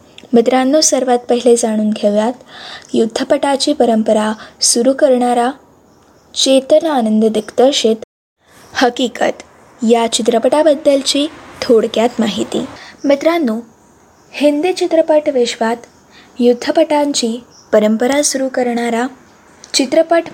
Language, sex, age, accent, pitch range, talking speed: Marathi, female, 20-39, native, 230-290 Hz, 75 wpm